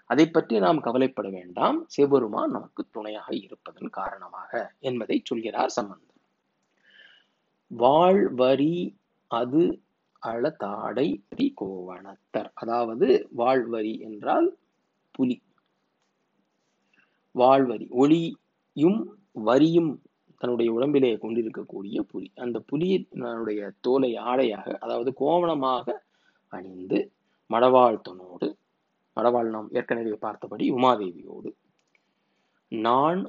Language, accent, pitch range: Tamil, native, 110-135 Hz